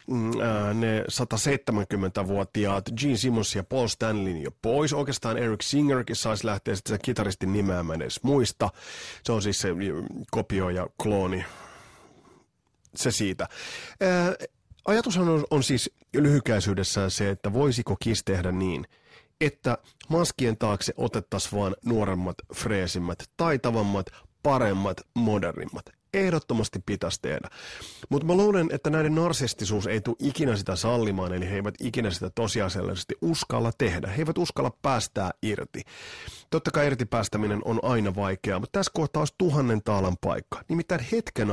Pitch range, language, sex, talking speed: 100-140 Hz, Finnish, male, 130 wpm